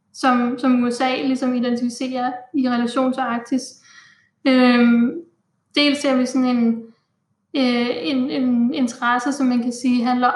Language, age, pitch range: Danish, 10-29, 240-265 Hz